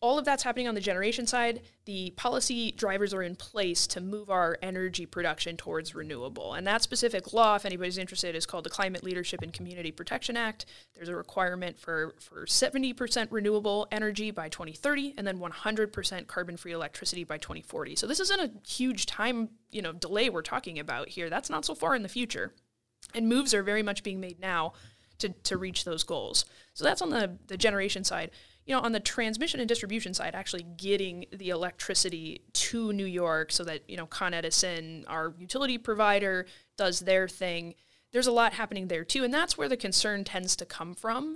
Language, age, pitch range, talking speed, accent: English, 20-39, 175-220 Hz, 195 wpm, American